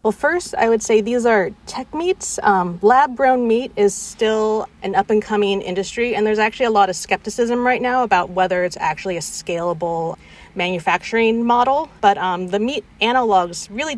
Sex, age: female, 30-49